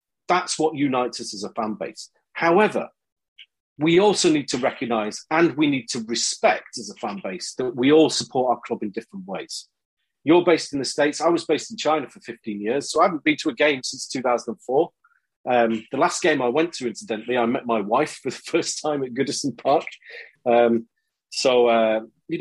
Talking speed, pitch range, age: 205 wpm, 120-180 Hz, 40-59